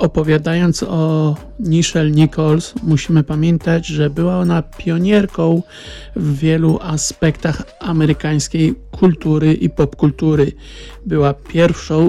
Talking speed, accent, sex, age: 95 wpm, native, male, 50-69